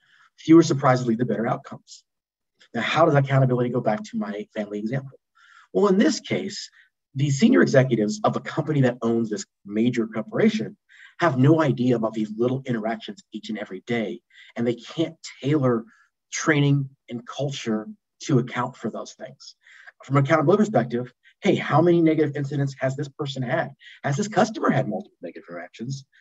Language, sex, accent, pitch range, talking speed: English, male, American, 115-140 Hz, 165 wpm